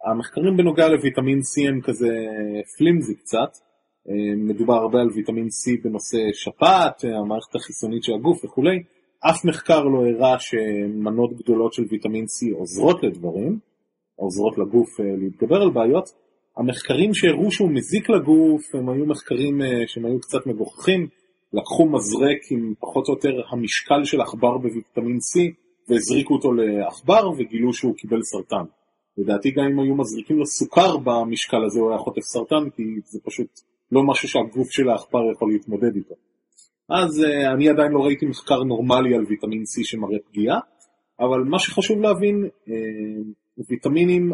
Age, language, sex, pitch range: 30-49, Hebrew, male, 110-160 Hz